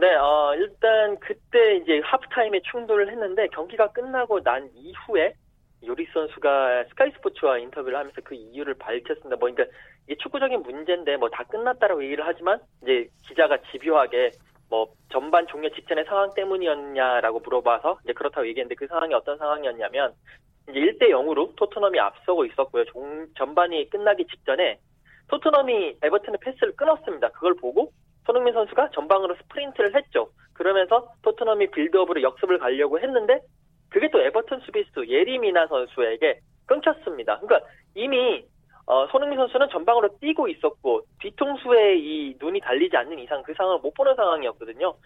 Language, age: Korean, 20-39